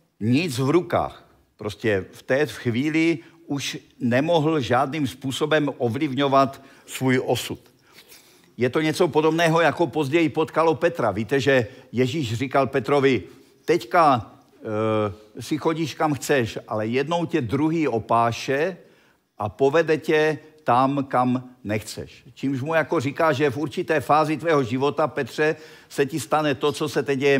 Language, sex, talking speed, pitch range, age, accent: Czech, male, 140 wpm, 130-160 Hz, 50-69, native